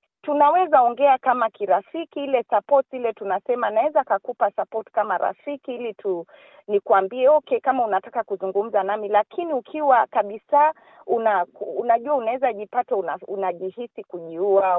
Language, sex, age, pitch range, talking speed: Swahili, female, 40-59, 195-245 Hz, 125 wpm